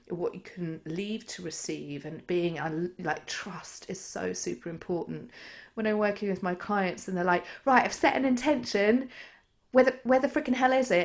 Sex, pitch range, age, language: female, 160-205 Hz, 30-49, English